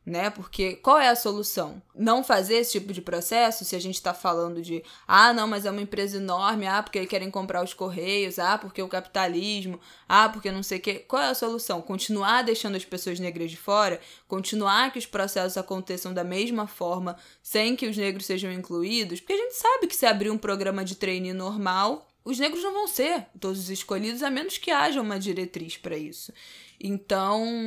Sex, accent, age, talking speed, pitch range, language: female, Brazilian, 10-29, 205 wpm, 185-225 Hz, Portuguese